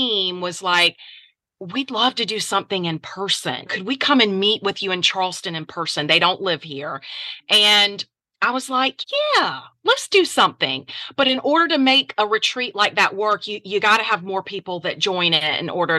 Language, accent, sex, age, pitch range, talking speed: English, American, female, 30-49, 175-220 Hz, 200 wpm